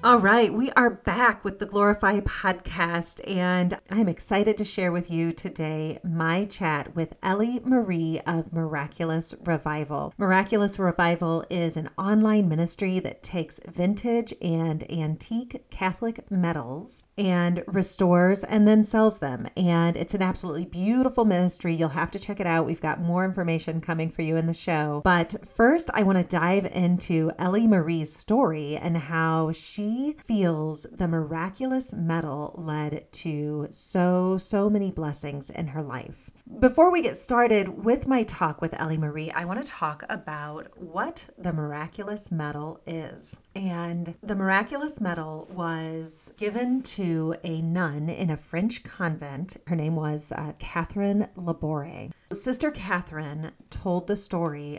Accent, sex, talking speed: American, female, 150 wpm